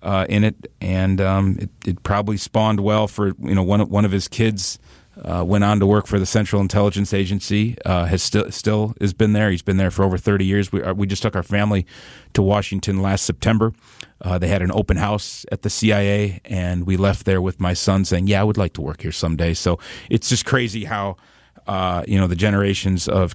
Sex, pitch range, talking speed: male, 95-110 Hz, 230 wpm